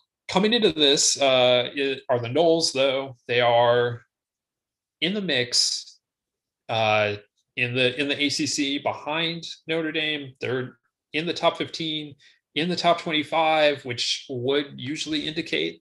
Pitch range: 110-145 Hz